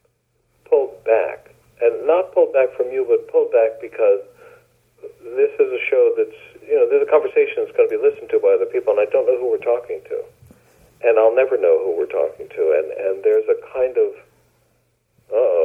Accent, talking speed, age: American, 205 wpm, 50-69